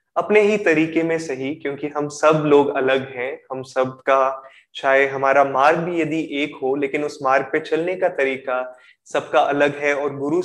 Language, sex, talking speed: Hindi, male, 190 wpm